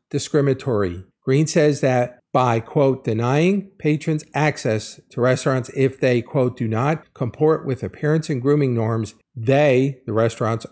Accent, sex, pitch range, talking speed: American, male, 115-150 Hz, 140 wpm